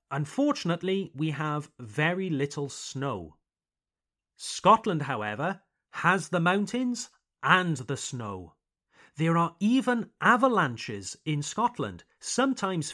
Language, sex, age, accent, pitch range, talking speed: French, male, 30-49, British, 135-190 Hz, 95 wpm